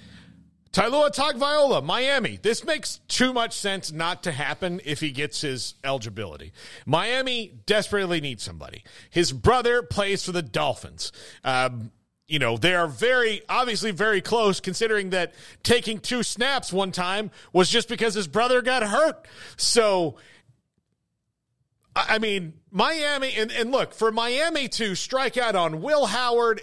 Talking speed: 145 wpm